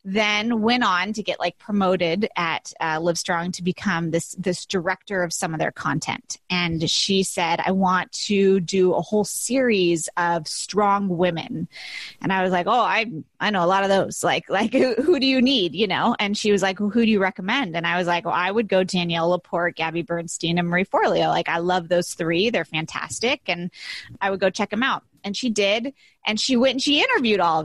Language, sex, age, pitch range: English, female, 20-39, 180-230 Hz